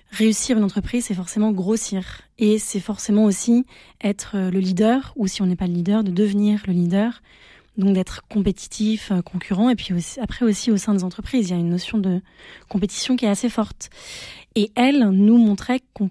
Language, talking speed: French, 195 wpm